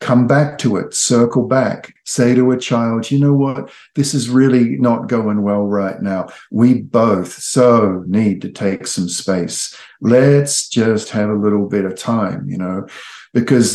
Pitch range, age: 110-130 Hz, 50-69